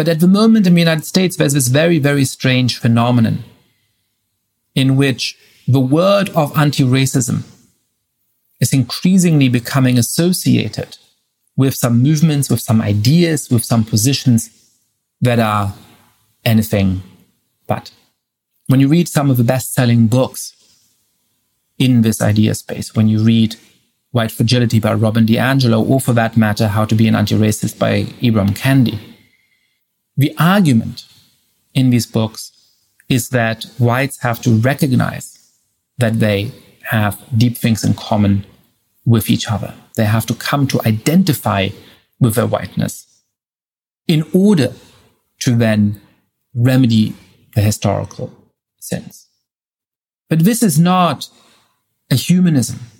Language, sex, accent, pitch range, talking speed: English, male, German, 110-135 Hz, 130 wpm